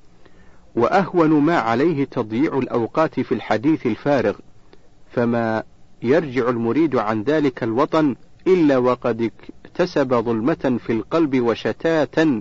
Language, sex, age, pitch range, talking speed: Arabic, male, 50-69, 115-155 Hz, 100 wpm